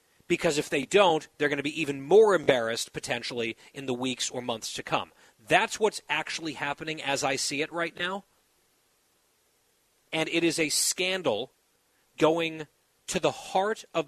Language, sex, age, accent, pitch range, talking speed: English, male, 30-49, American, 135-170 Hz, 165 wpm